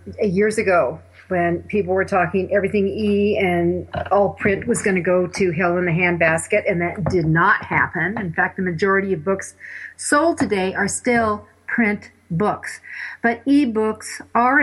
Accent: American